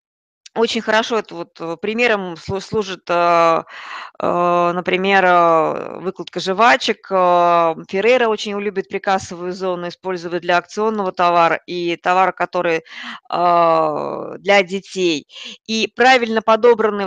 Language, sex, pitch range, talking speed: Russian, female, 180-225 Hz, 90 wpm